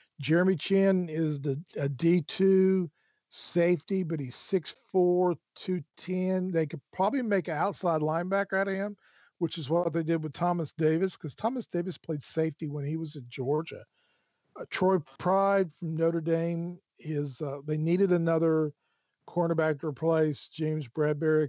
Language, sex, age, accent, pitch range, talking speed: English, male, 50-69, American, 150-175 Hz, 155 wpm